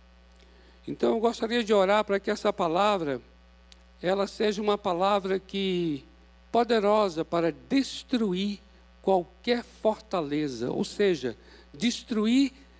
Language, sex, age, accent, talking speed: Portuguese, male, 60-79, Brazilian, 100 wpm